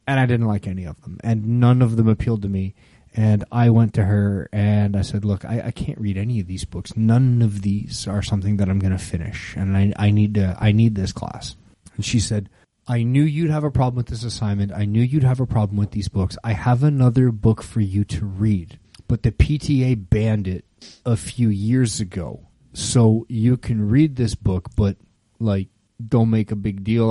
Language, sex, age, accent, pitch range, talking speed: English, male, 30-49, American, 100-120 Hz, 225 wpm